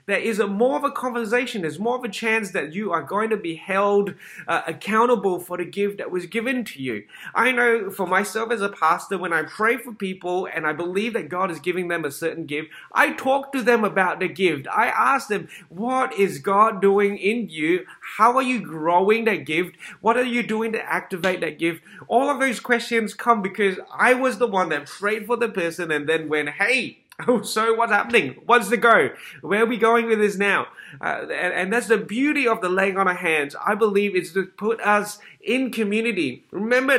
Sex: male